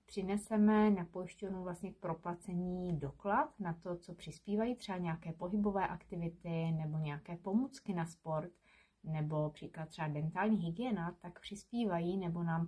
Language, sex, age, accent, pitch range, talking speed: Czech, female, 30-49, native, 165-200 Hz, 135 wpm